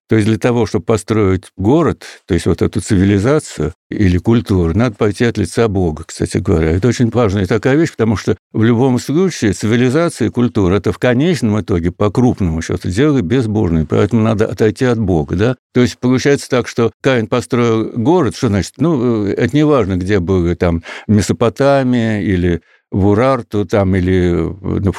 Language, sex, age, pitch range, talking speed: Russian, male, 60-79, 100-125 Hz, 175 wpm